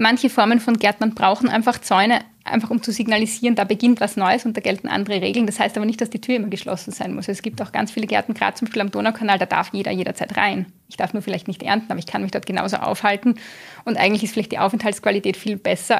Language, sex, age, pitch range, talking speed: German, female, 20-39, 200-230 Hz, 255 wpm